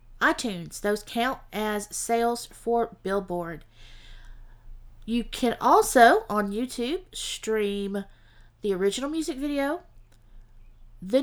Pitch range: 175-240 Hz